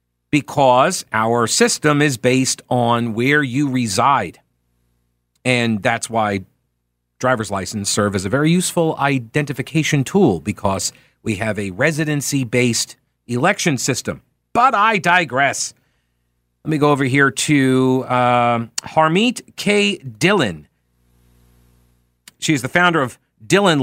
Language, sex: English, male